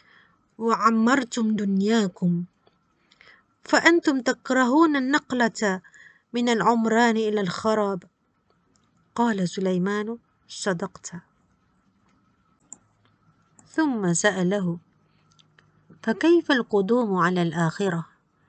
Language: Malay